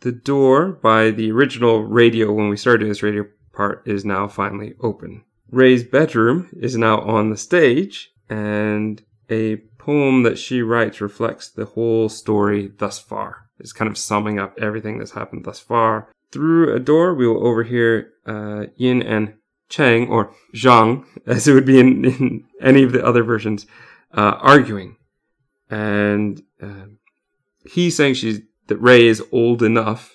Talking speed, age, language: 160 wpm, 30-49, English